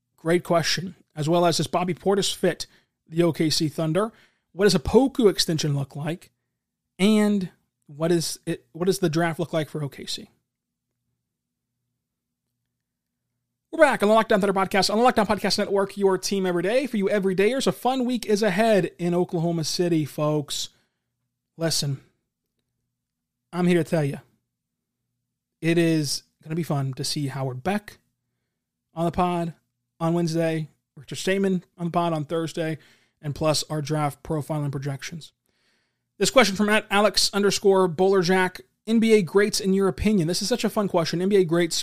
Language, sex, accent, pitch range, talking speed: English, male, American, 150-195 Hz, 165 wpm